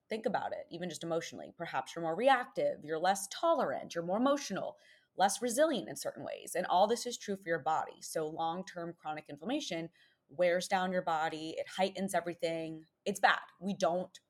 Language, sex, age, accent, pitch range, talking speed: English, female, 20-39, American, 160-210 Hz, 185 wpm